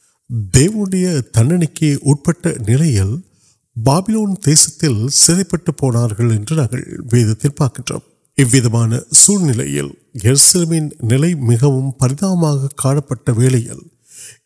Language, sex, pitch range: Urdu, male, 120-165 Hz